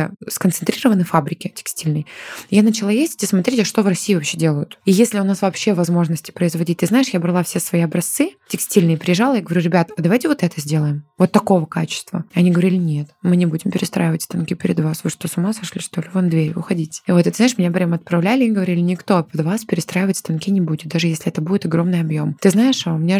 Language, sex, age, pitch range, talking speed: Russian, female, 20-39, 170-195 Hz, 220 wpm